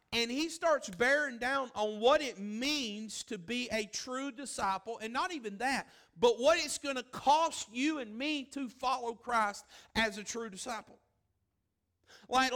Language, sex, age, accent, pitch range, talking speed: English, male, 40-59, American, 225-270 Hz, 165 wpm